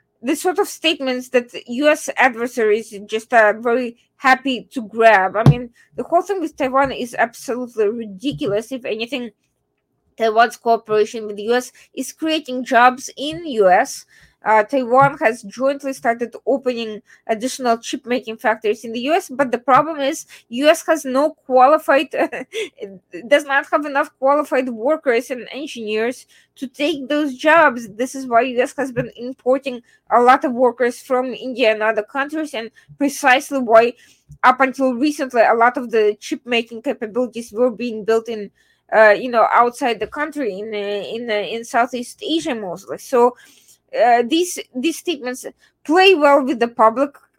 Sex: female